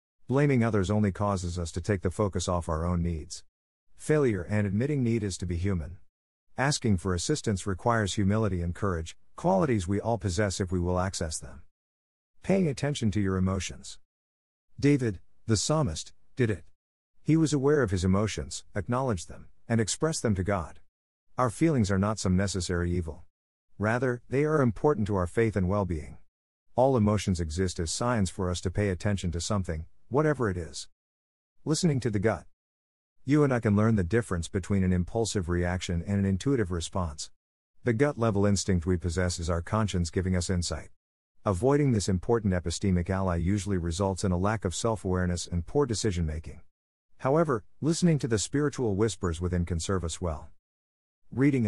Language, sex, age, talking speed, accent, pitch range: English, male, 50-69, 170 wpm, American, 85-115 Hz